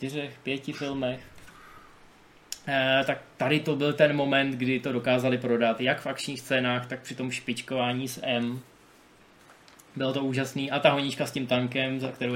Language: Czech